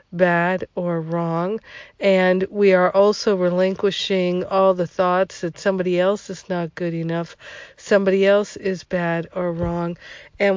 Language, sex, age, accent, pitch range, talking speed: English, female, 50-69, American, 170-190 Hz, 140 wpm